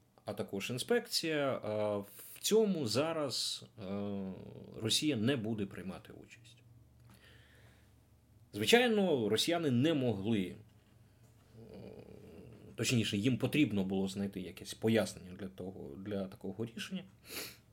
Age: 30-49